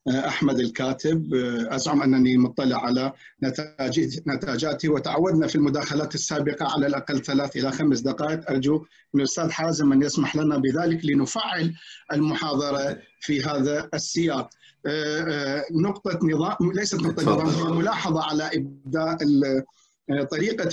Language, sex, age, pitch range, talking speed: Arabic, male, 50-69, 145-165 Hz, 115 wpm